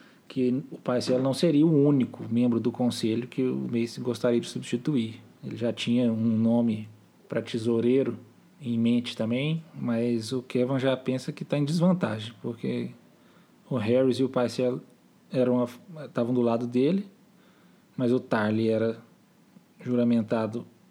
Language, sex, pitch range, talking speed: Portuguese, male, 115-135 Hz, 145 wpm